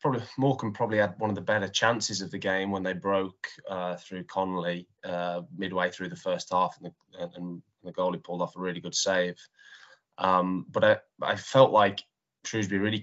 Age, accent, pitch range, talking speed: 20-39, British, 95-110 Hz, 200 wpm